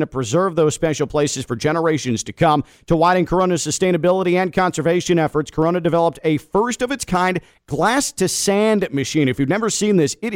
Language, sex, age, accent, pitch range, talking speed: English, male, 50-69, American, 150-180 Hz, 160 wpm